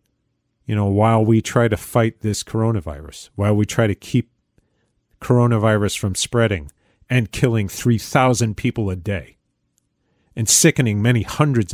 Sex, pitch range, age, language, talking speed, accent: male, 100-130 Hz, 40-59, English, 140 wpm, American